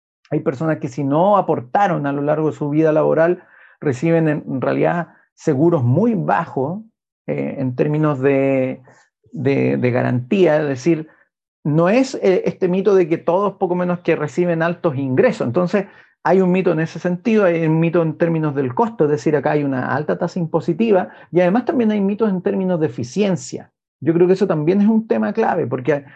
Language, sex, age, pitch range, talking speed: Spanish, male, 40-59, 150-190 Hz, 185 wpm